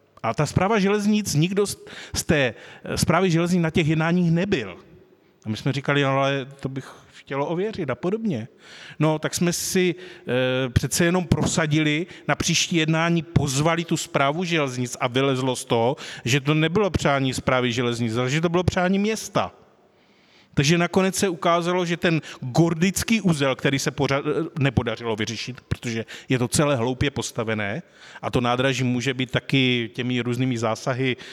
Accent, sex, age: native, male, 30-49